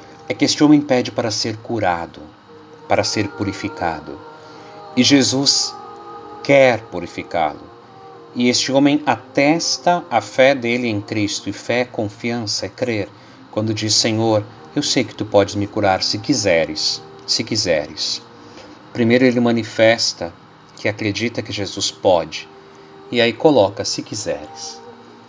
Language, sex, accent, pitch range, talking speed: Portuguese, male, Brazilian, 100-130 Hz, 135 wpm